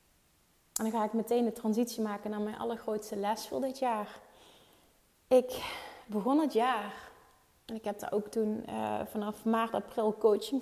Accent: Dutch